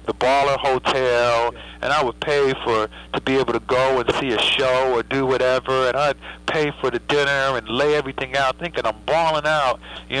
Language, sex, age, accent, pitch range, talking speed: English, male, 50-69, American, 130-155 Hz, 210 wpm